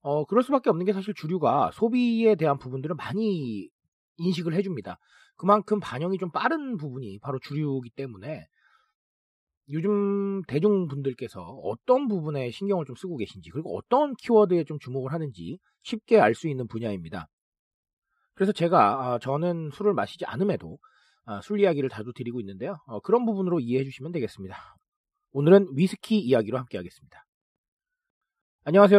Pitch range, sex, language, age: 130-205 Hz, male, Korean, 40-59